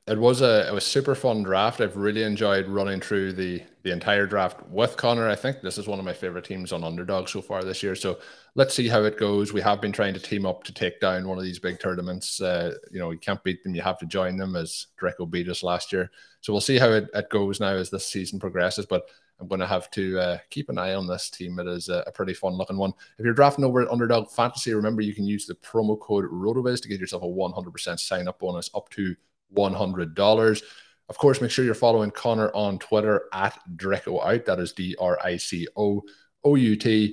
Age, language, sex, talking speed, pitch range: 20-39, English, male, 240 wpm, 90-105 Hz